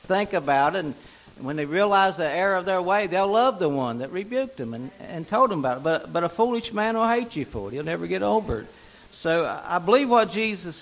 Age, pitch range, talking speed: 60-79, 150-200 Hz, 245 wpm